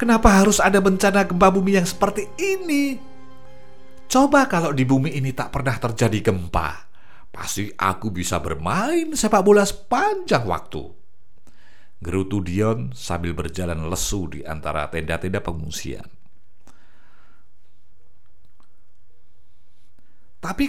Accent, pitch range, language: native, 90-135 Hz, Indonesian